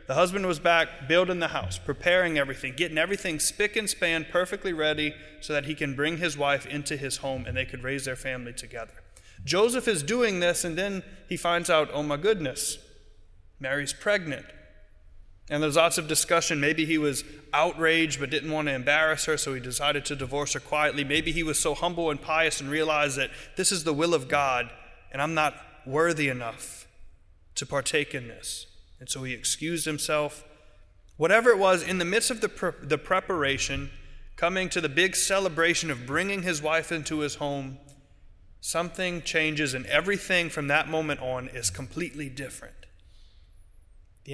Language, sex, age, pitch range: English, male, 20-39, 130-170 Hz